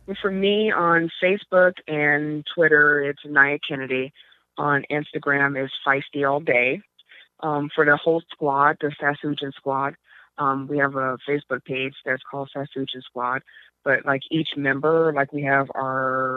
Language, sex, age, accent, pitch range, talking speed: English, female, 20-39, American, 130-145 Hz, 150 wpm